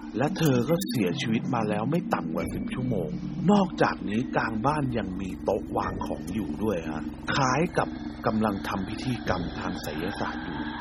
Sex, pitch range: male, 80-130 Hz